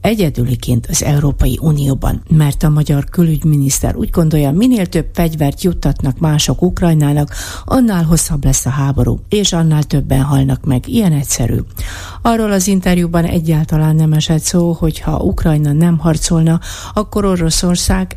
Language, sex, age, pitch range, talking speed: Hungarian, female, 50-69, 145-185 Hz, 140 wpm